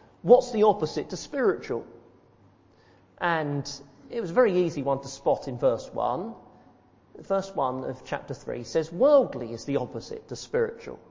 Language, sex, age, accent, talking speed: English, male, 40-59, British, 155 wpm